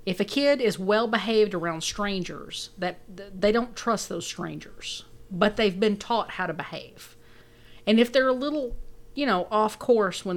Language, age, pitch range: English, 40-59, 160-220 Hz